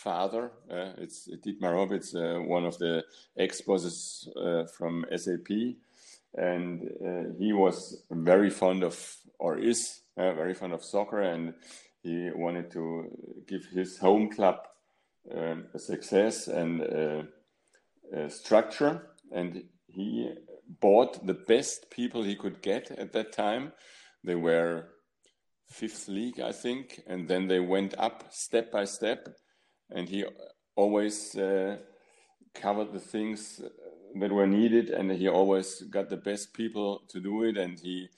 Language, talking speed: English, 140 wpm